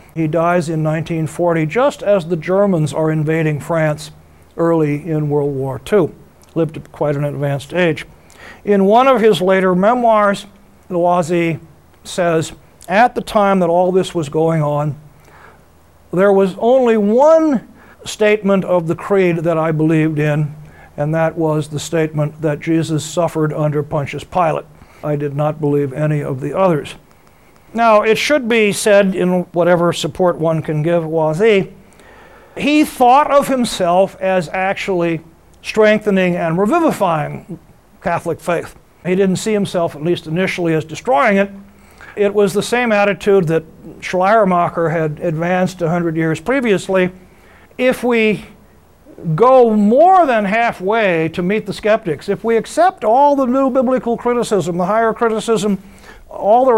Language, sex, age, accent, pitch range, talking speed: English, male, 60-79, American, 160-210 Hz, 145 wpm